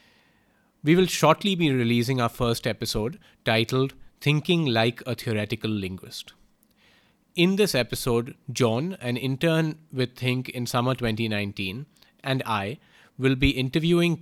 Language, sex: English, male